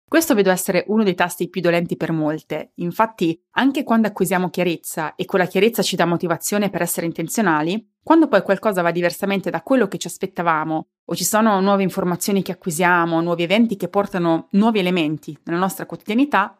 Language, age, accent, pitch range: Italian, 30-49, native, 175-225 Hz